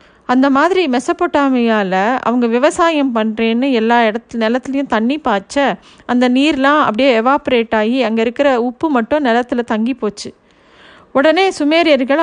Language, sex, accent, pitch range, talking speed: Tamil, female, native, 220-275 Hz, 125 wpm